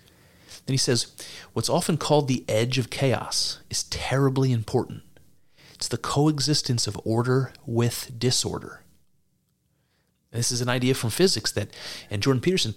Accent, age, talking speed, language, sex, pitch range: American, 30-49, 145 wpm, English, male, 110-135 Hz